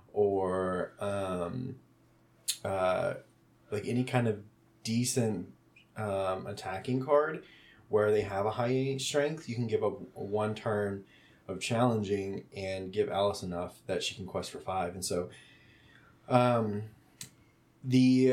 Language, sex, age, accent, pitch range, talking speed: English, male, 20-39, American, 100-125 Hz, 130 wpm